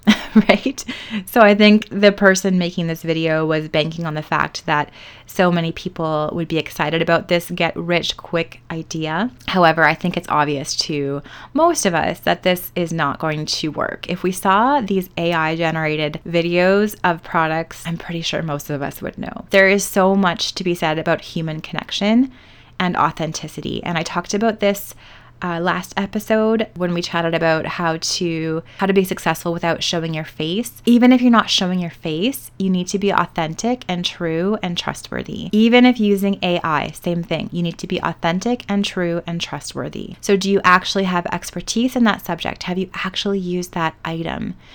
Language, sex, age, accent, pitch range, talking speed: English, female, 20-39, American, 165-195 Hz, 190 wpm